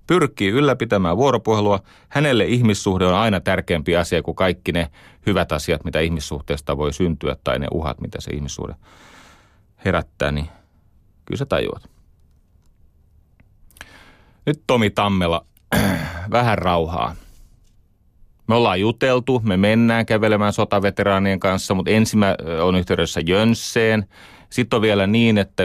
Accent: native